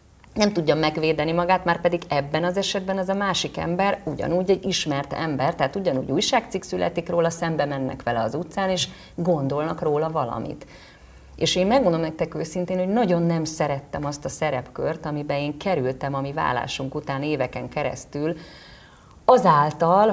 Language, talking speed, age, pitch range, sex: Hungarian, 160 wpm, 30-49, 145-180 Hz, female